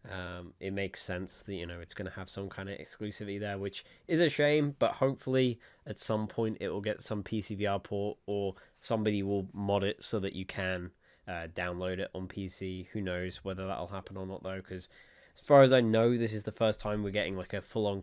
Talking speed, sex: 230 wpm, male